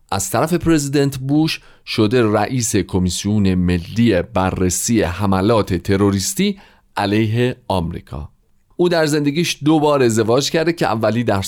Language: Persian